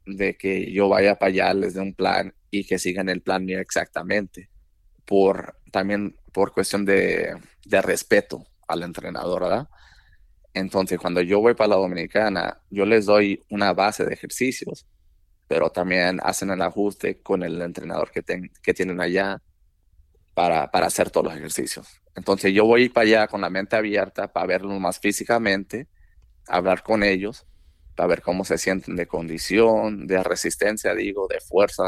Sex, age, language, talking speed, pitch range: male, 30-49, English, 165 wpm, 90-105 Hz